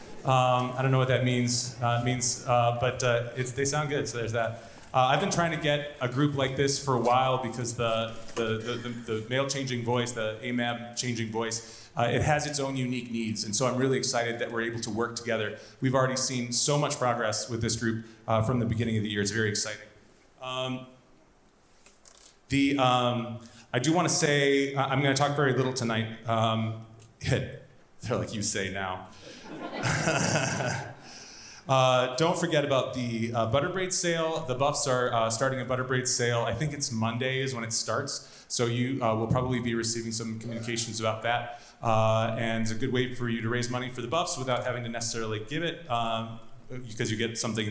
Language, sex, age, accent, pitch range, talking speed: English, male, 30-49, American, 115-130 Hz, 205 wpm